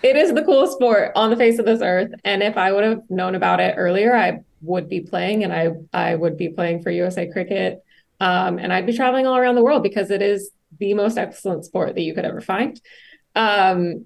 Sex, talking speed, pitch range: female, 235 wpm, 185-220 Hz